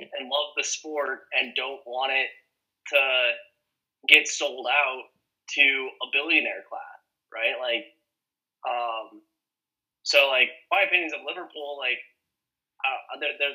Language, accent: English, American